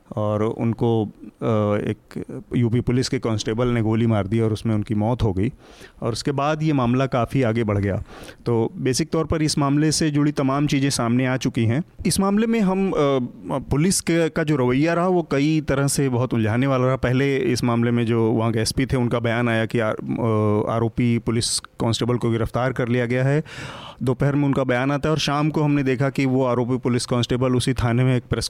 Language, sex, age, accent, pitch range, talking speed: Hindi, male, 30-49, native, 115-140 Hz, 215 wpm